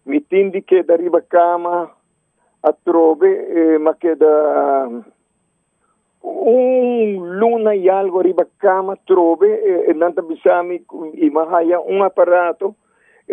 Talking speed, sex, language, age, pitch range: 135 wpm, male, English, 50-69, 150-190 Hz